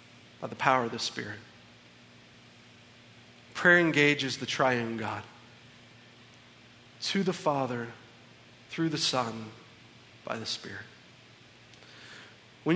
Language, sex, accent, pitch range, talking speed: English, male, American, 135-195 Hz, 100 wpm